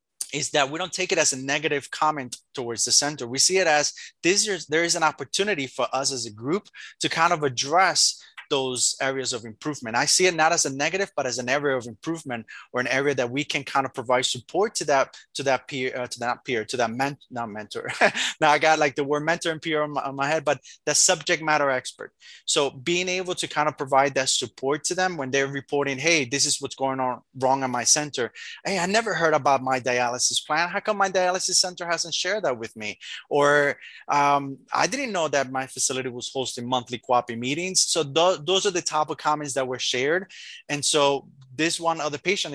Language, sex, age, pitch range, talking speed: English, male, 20-39, 125-155 Hz, 230 wpm